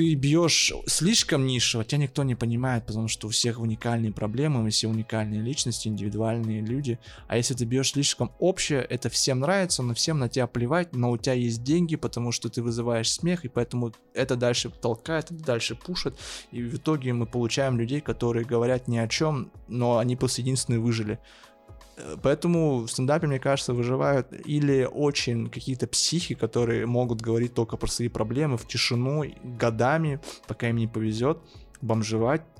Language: Russian